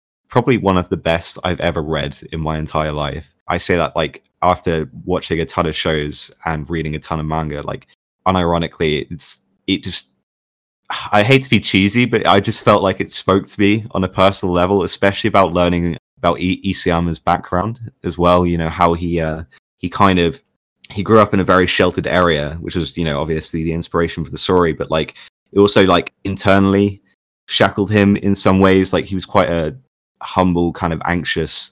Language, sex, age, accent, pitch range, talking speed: English, male, 20-39, British, 85-100 Hz, 200 wpm